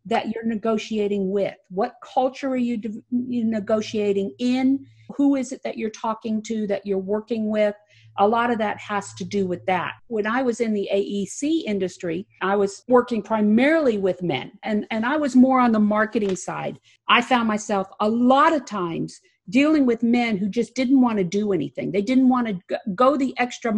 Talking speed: 195 wpm